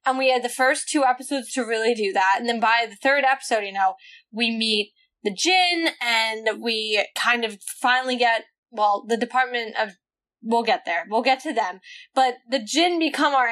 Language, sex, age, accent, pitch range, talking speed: English, female, 10-29, American, 220-280 Hz, 200 wpm